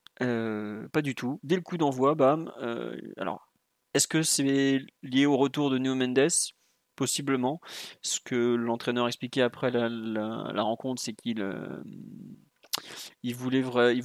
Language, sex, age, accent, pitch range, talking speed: French, male, 30-49, French, 115-135 Hz, 150 wpm